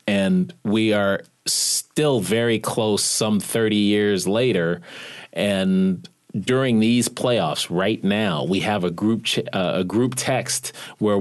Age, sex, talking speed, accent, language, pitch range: 30-49, male, 140 wpm, American, English, 90-120 Hz